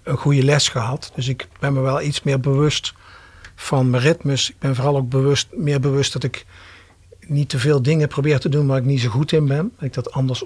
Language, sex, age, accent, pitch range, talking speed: English, male, 50-69, Dutch, 130-160 Hz, 240 wpm